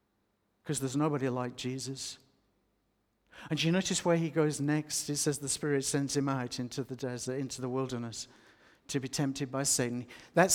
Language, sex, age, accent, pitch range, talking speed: English, male, 60-79, British, 125-150 Hz, 170 wpm